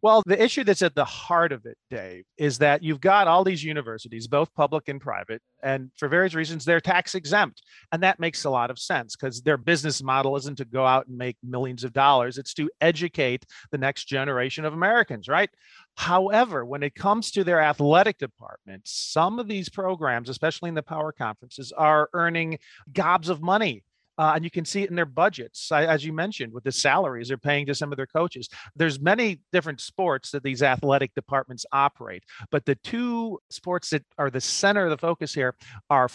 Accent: American